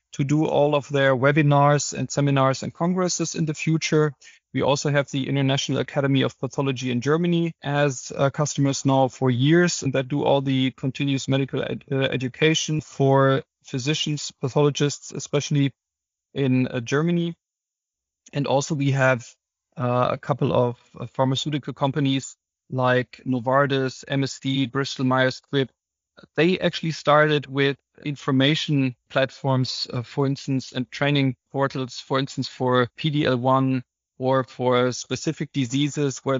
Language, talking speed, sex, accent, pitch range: English, 135 wpm, male, German, 130-155 Hz